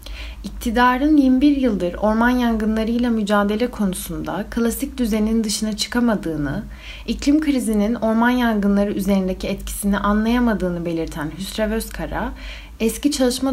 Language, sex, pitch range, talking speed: Turkish, female, 175-225 Hz, 100 wpm